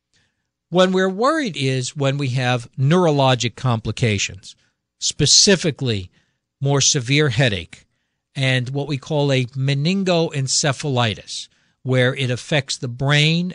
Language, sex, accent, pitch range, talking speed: English, male, American, 120-150 Hz, 105 wpm